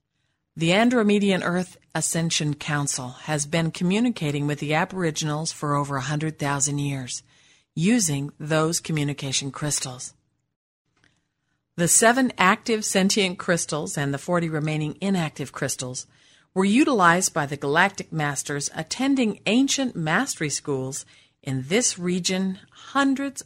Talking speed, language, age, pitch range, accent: 115 wpm, English, 50-69, 145-200 Hz, American